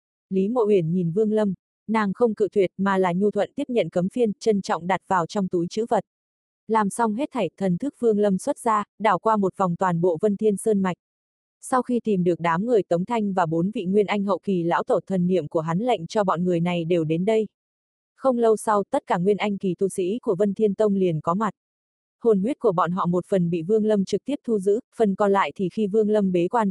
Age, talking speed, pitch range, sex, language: 20-39, 260 wpm, 180-220 Hz, female, Vietnamese